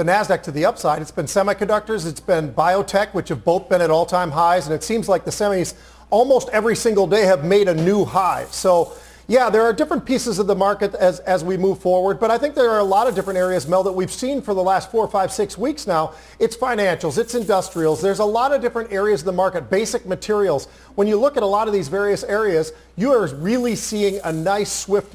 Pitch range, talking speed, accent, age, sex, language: 180-210 Hz, 240 wpm, American, 40-59, male, English